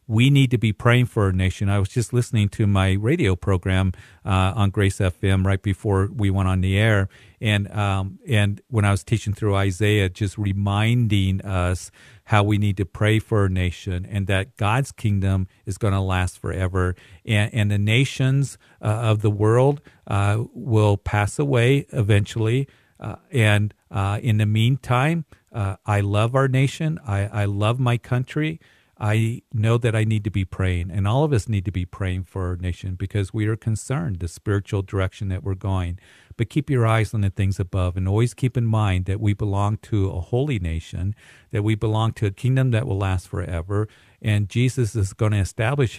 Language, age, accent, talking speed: English, 50-69, American, 195 wpm